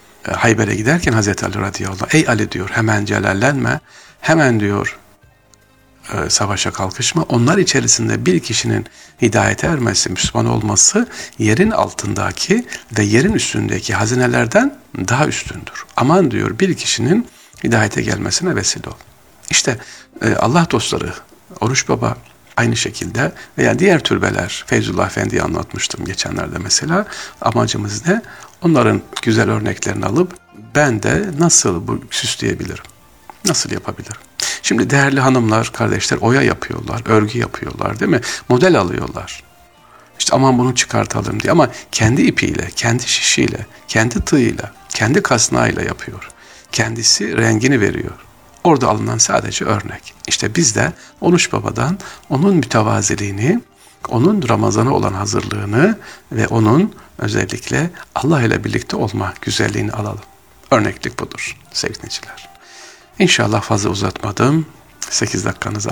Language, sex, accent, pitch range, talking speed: Turkish, male, native, 105-135 Hz, 115 wpm